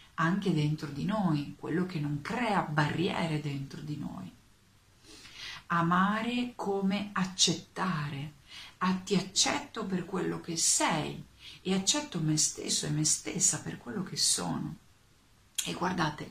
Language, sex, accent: Italian, female, native